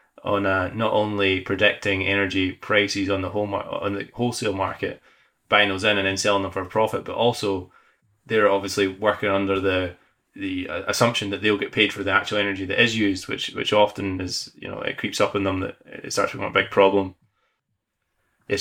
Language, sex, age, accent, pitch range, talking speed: English, male, 20-39, British, 95-105 Hz, 205 wpm